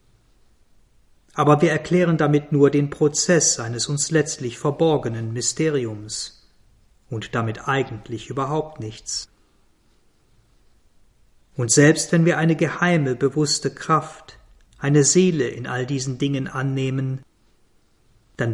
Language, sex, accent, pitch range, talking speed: German, male, German, 120-150 Hz, 105 wpm